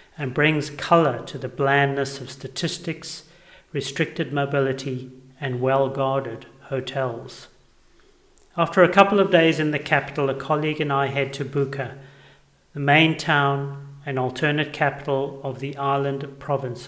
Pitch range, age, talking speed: 135-155 Hz, 40-59, 135 wpm